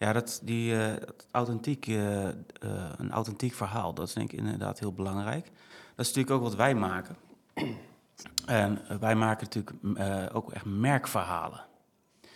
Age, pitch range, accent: 30-49, 100-120 Hz, Dutch